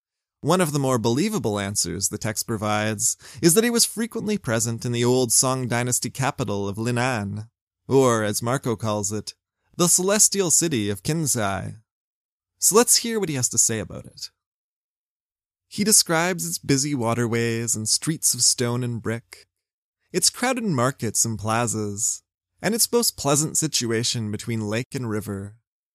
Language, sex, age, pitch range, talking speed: English, male, 20-39, 110-155 Hz, 155 wpm